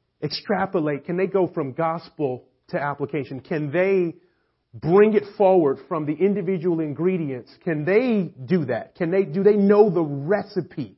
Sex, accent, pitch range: male, American, 145-190 Hz